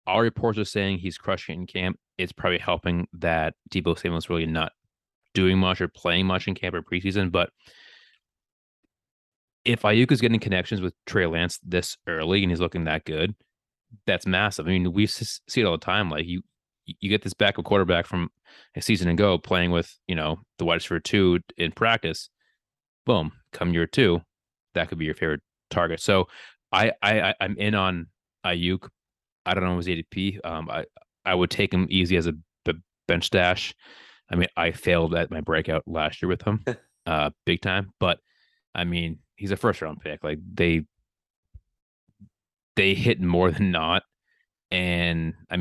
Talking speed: 180 wpm